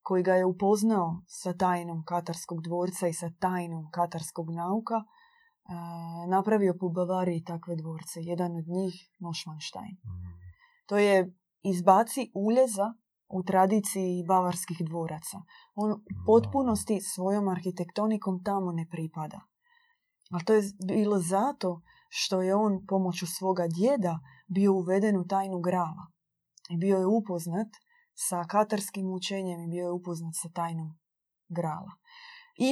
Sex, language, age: female, Croatian, 20-39